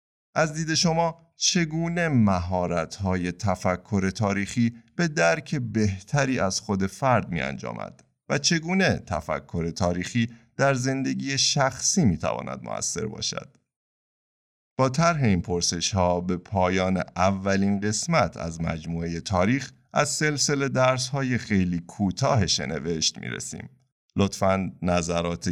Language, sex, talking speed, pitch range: Persian, male, 110 wpm, 85-125 Hz